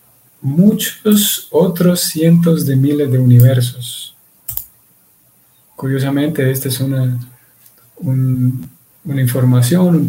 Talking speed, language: 90 wpm, Spanish